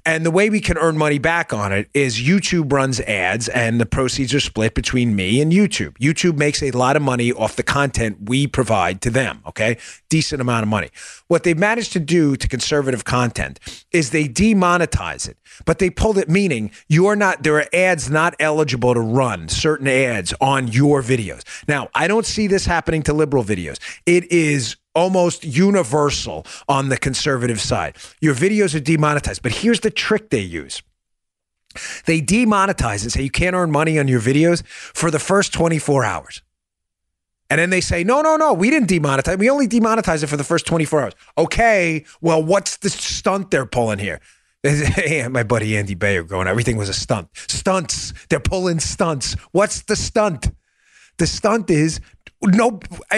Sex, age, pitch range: male, 30-49, 125-185 Hz